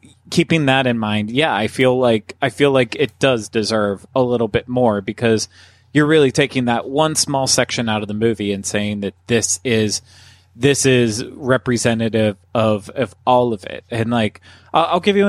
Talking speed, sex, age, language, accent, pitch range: 190 wpm, male, 30-49, English, American, 100-125 Hz